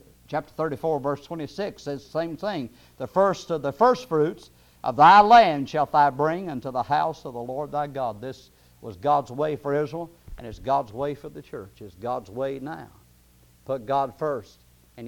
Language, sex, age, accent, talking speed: English, male, 50-69, American, 190 wpm